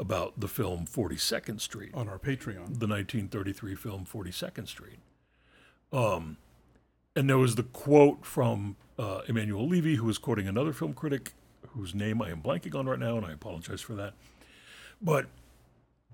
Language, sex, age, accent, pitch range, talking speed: English, male, 60-79, American, 75-125 Hz, 160 wpm